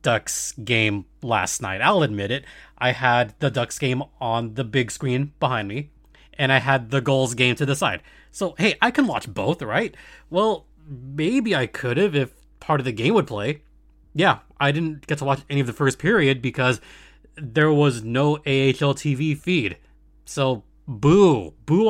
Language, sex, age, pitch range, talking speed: English, male, 20-39, 130-180 Hz, 185 wpm